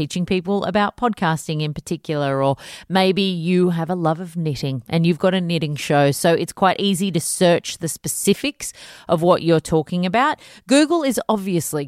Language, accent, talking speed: English, Australian, 180 wpm